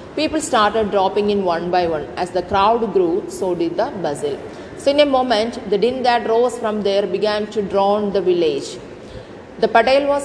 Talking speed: 195 wpm